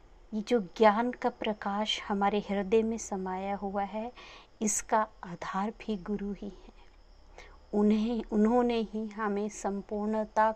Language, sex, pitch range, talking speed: Hindi, female, 195-220 Hz, 125 wpm